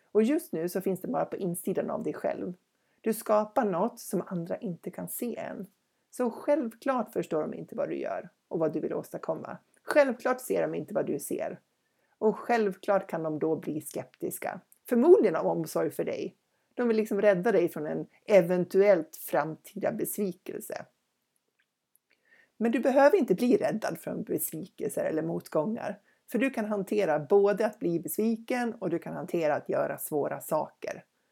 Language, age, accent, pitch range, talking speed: Swedish, 60-79, native, 190-240 Hz, 170 wpm